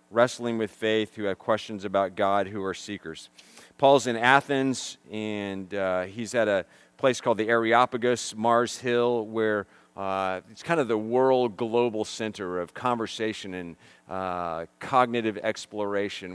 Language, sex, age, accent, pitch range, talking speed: English, male, 40-59, American, 100-125 Hz, 145 wpm